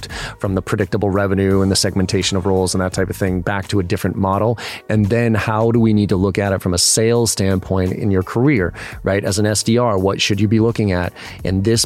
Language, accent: English, American